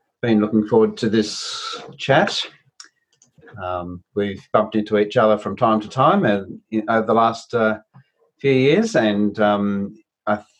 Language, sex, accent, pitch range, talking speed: English, male, Australian, 95-110 Hz, 140 wpm